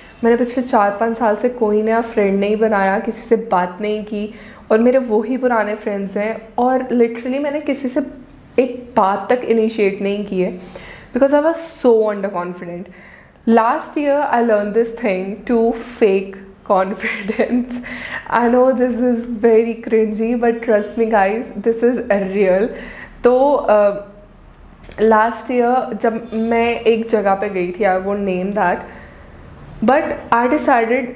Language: Hindi